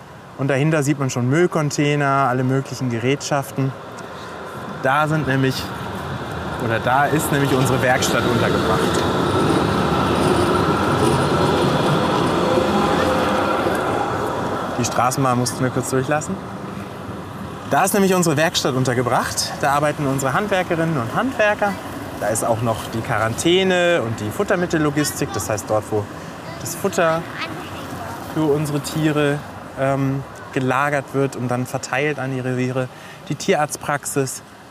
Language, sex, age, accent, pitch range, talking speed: German, male, 20-39, German, 120-155 Hz, 110 wpm